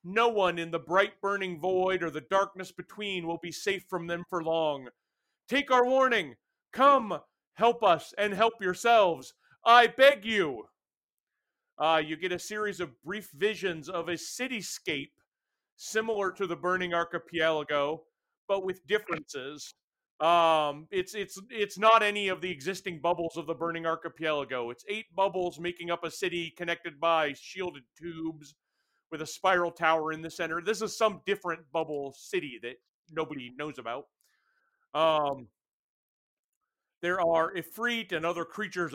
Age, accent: 40-59, American